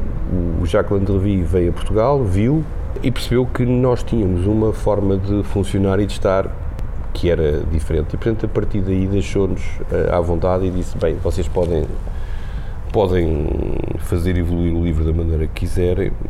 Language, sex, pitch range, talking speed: Portuguese, male, 80-100 Hz, 160 wpm